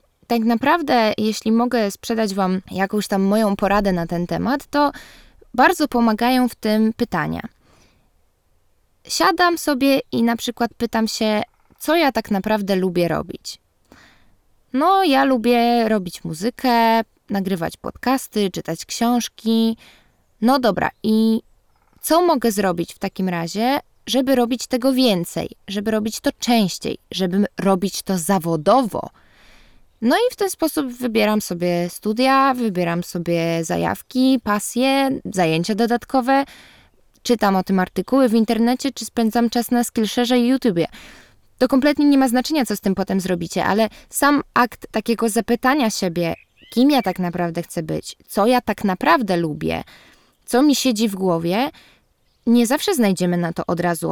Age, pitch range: 20-39, 195-255 Hz